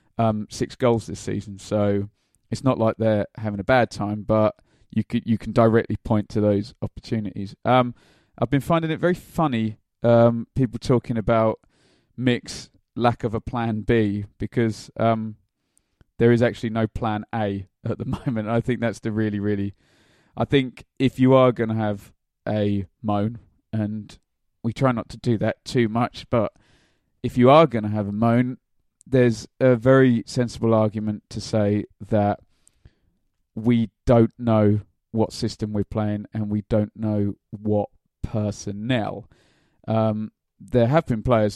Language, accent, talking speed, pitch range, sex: English, British, 165 wpm, 105-120 Hz, male